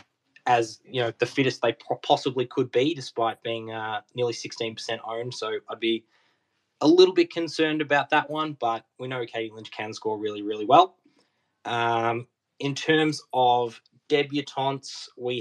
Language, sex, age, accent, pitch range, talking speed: English, male, 10-29, Australian, 115-135 Hz, 160 wpm